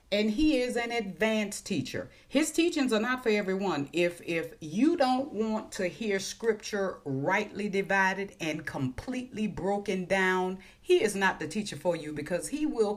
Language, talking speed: English, 165 wpm